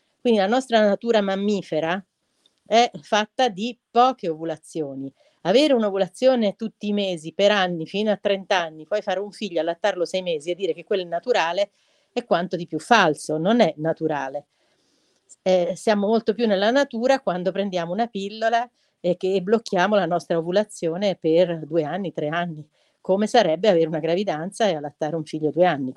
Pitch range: 165-205 Hz